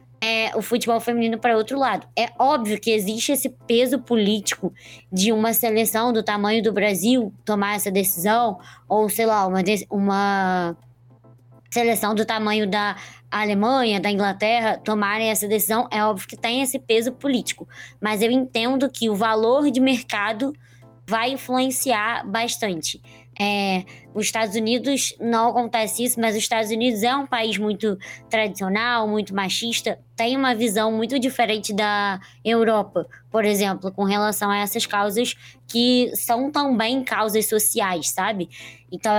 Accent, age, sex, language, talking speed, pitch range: Brazilian, 20-39, male, Portuguese, 145 wpm, 200-235 Hz